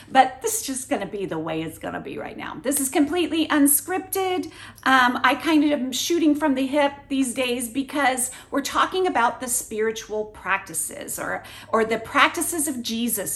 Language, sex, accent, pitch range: English, female, American, 225-320 Hz